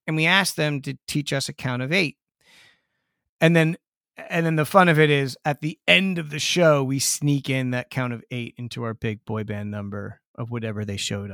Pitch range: 125-175 Hz